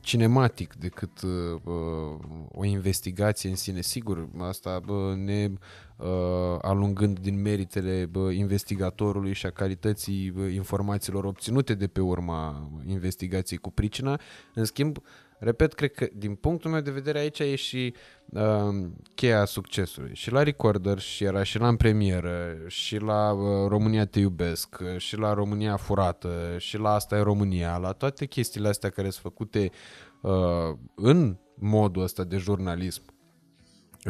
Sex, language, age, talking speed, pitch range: male, Romanian, 20-39, 145 wpm, 95-120 Hz